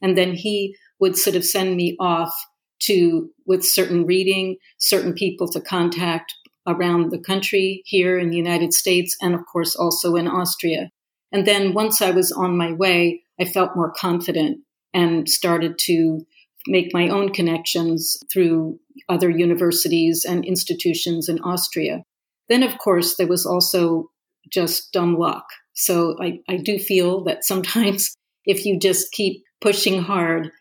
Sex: female